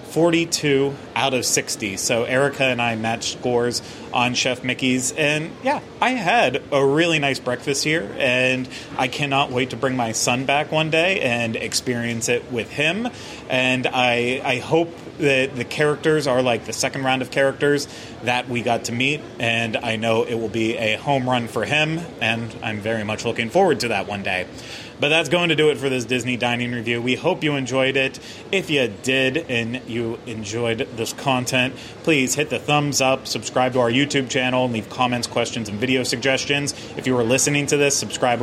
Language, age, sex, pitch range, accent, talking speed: English, 30-49, male, 120-145 Hz, American, 195 wpm